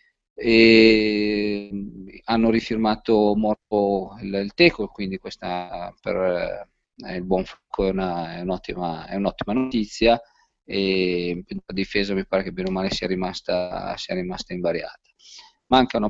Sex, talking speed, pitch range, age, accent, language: male, 130 wpm, 95-115 Hz, 40-59, native, Italian